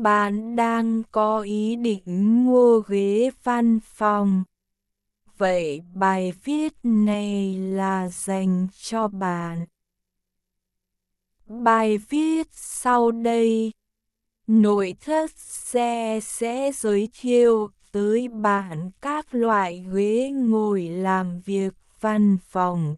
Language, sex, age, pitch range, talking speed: Vietnamese, female, 20-39, 190-235 Hz, 95 wpm